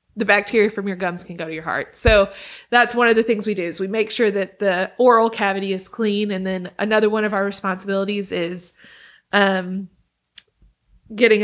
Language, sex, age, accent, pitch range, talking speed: English, female, 20-39, American, 190-215 Hz, 200 wpm